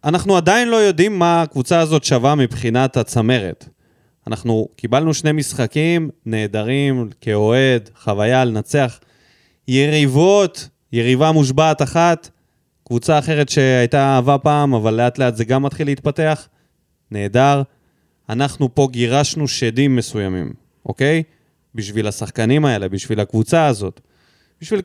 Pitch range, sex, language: 120-155 Hz, male, Hebrew